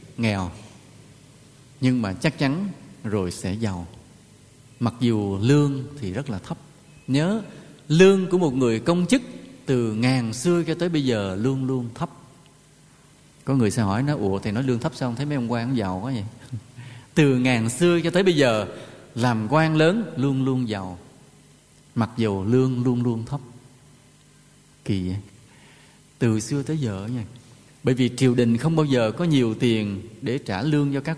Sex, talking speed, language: male, 175 wpm, Vietnamese